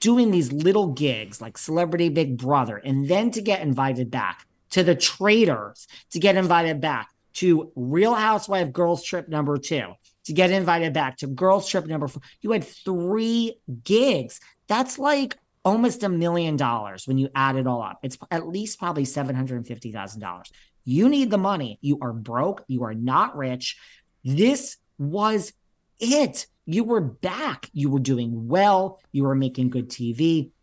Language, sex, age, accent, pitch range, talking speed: English, male, 40-59, American, 130-180 Hz, 165 wpm